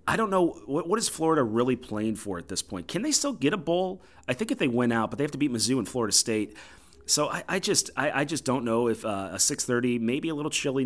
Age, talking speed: 30-49, 280 wpm